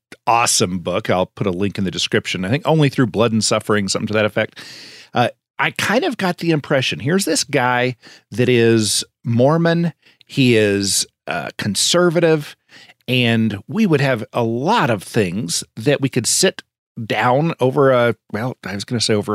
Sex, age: male, 40-59